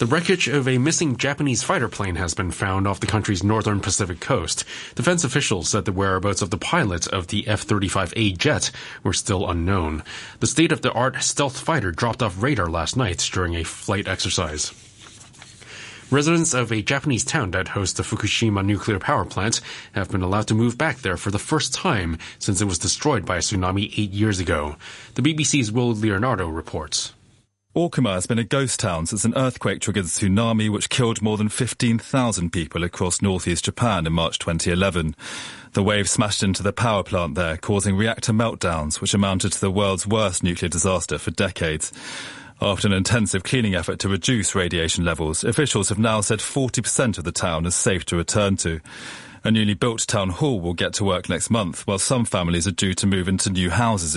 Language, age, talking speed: English, 20-39, 190 wpm